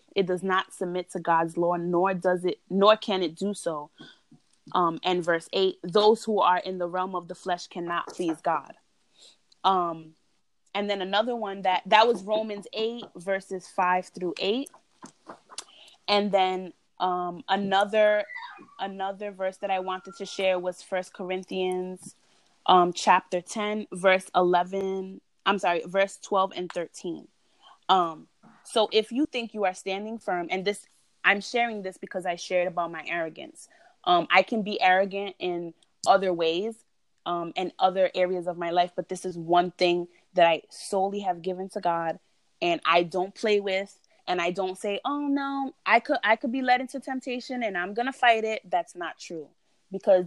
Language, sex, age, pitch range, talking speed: English, female, 20-39, 180-205 Hz, 175 wpm